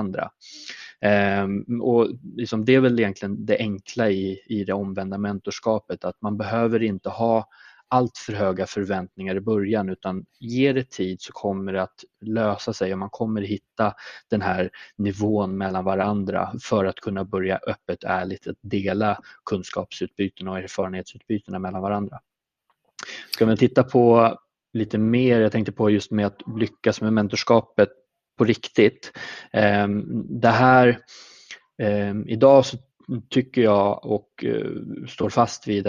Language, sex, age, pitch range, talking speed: Swedish, male, 20-39, 95-115 Hz, 140 wpm